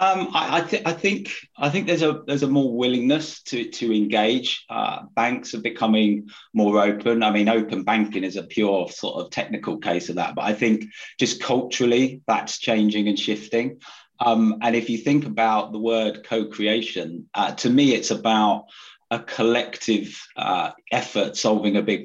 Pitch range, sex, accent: 105-115 Hz, male, British